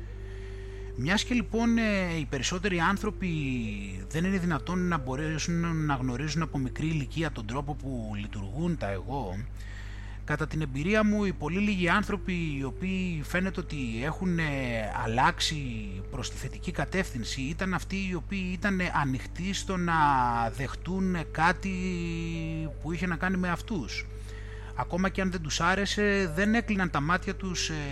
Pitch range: 120-185 Hz